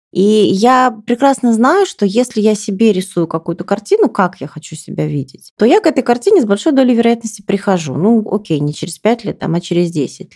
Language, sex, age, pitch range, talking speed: Russian, female, 30-49, 170-230 Hz, 205 wpm